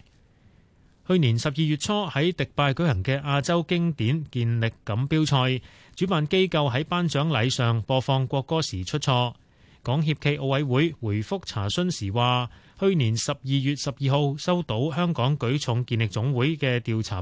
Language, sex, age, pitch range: Chinese, male, 30-49, 120-155 Hz